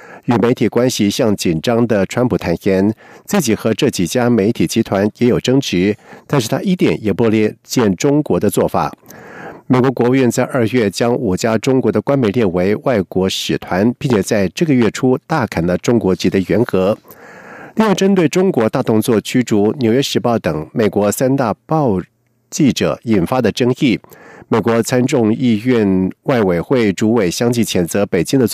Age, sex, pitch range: 50-69, male, 105-130 Hz